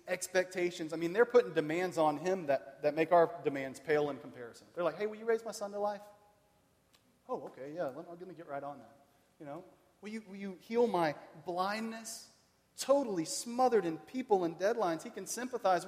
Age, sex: 40-59, male